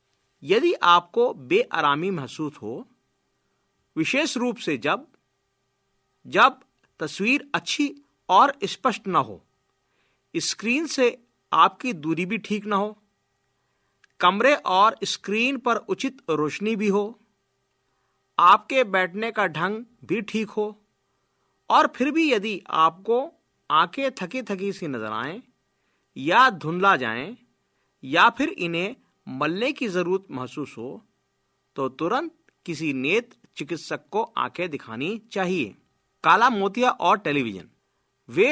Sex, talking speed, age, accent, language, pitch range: male, 115 wpm, 50-69, native, Hindi, 165-245 Hz